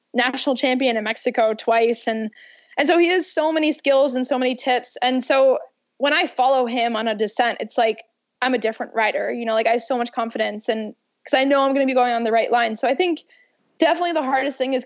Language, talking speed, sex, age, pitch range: English, 245 wpm, female, 10-29, 225-270 Hz